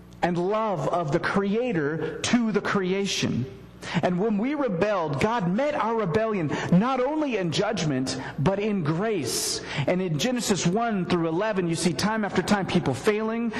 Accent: American